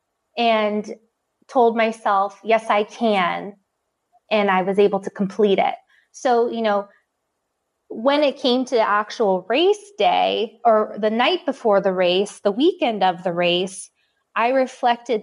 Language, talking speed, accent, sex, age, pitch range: English, 145 wpm, American, female, 20-39, 205-240 Hz